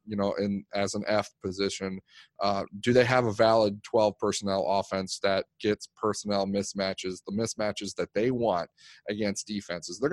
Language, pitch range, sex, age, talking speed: English, 105-130 Hz, male, 30-49, 165 wpm